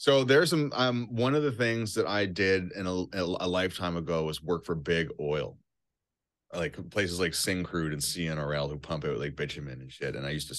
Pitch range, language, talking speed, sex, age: 75-95 Hz, English, 215 wpm, male, 30-49